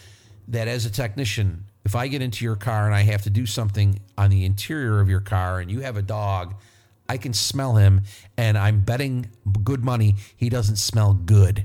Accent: American